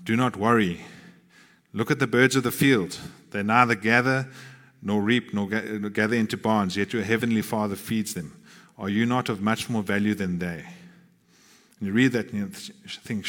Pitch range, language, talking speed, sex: 105-135 Hz, English, 185 wpm, male